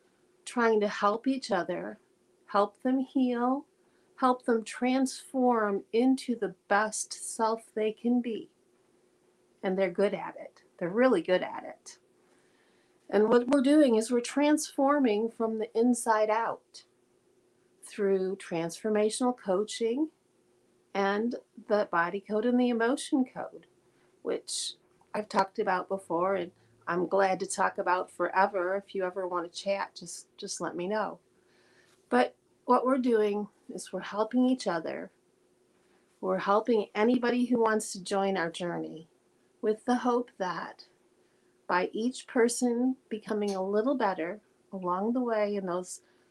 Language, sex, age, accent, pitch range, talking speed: English, female, 40-59, American, 190-240 Hz, 135 wpm